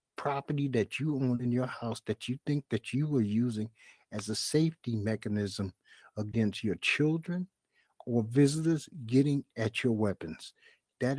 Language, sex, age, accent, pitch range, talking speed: English, male, 60-79, American, 110-155 Hz, 150 wpm